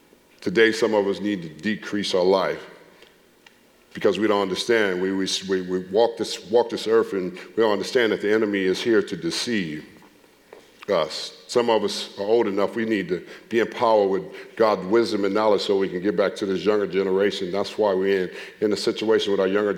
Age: 50-69